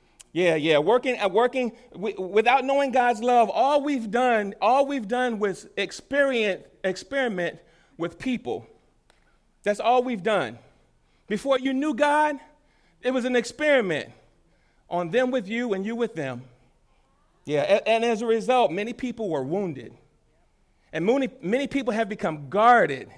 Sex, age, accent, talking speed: male, 40-59, American, 140 wpm